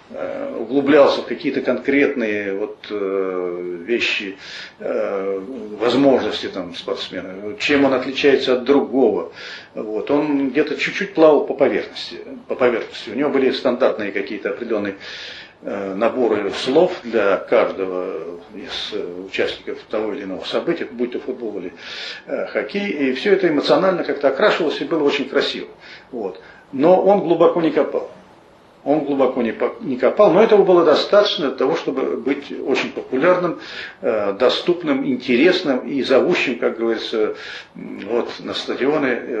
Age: 40-59